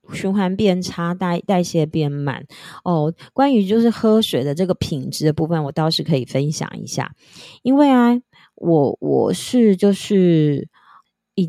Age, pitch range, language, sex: 20-39, 155-205 Hz, Chinese, female